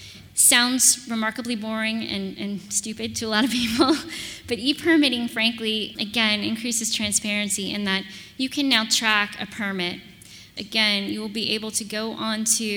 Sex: female